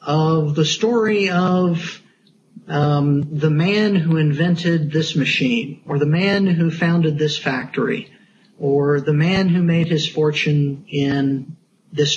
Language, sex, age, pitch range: English, male, 40-59, 145-200 Hz